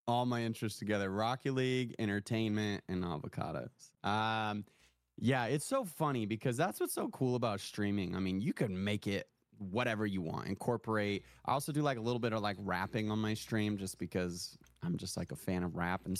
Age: 20-39